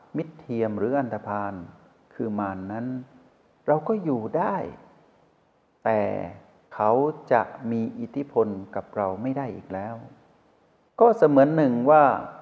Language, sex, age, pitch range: Thai, male, 60-79, 100-135 Hz